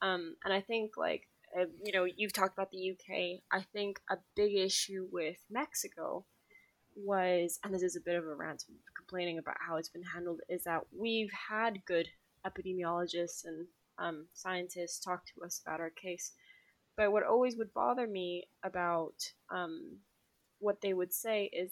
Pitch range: 180-215 Hz